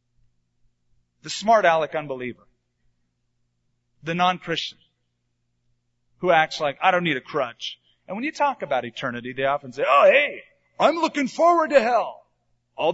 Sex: male